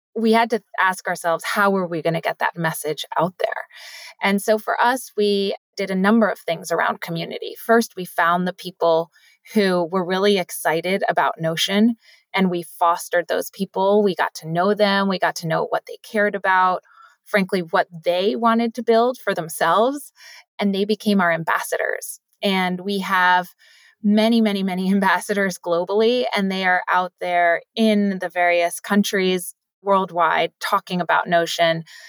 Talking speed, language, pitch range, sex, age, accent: 170 wpm, English, 170-215 Hz, female, 20-39, American